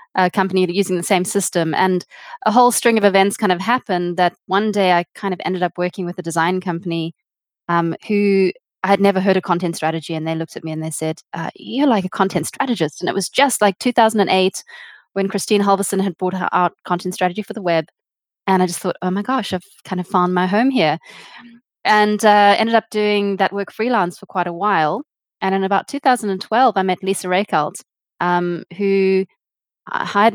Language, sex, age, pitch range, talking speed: English, female, 20-39, 175-210 Hz, 210 wpm